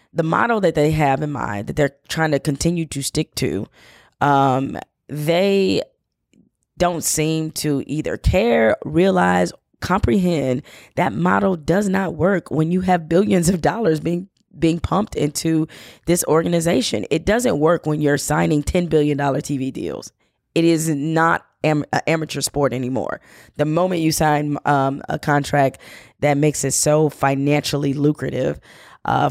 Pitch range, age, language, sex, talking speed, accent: 140-160 Hz, 20-39, English, female, 150 wpm, American